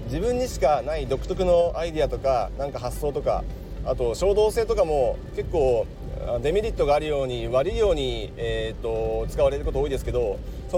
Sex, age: male, 40-59